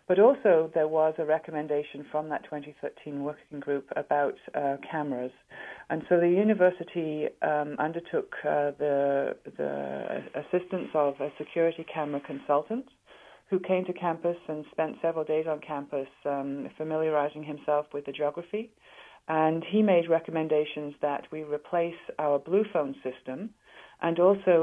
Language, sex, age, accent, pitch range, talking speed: English, female, 40-59, British, 145-165 Hz, 140 wpm